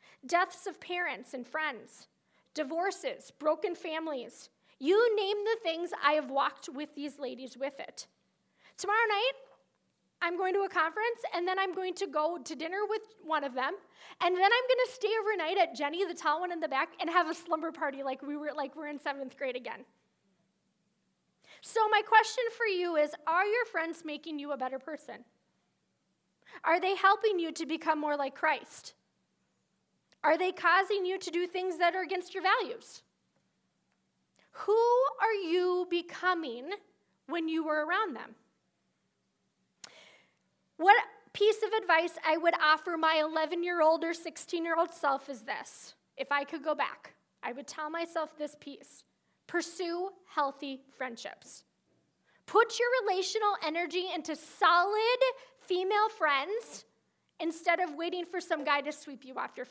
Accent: American